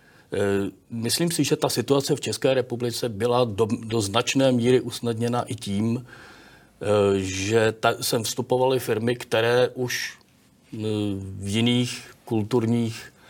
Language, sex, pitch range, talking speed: Czech, male, 105-120 Hz, 115 wpm